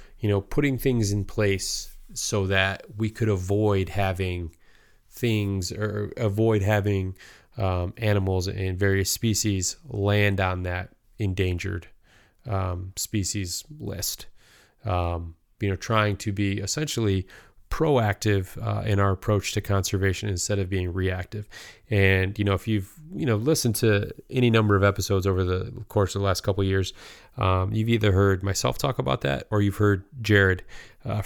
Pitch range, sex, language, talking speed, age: 95-110 Hz, male, English, 155 wpm, 20-39